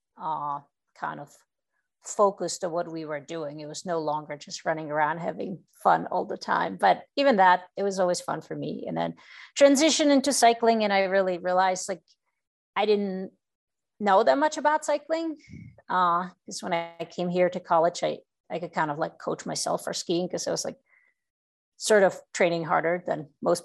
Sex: female